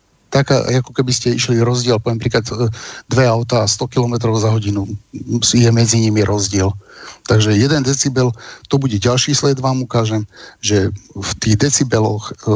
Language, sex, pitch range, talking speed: Slovak, male, 105-125 Hz, 150 wpm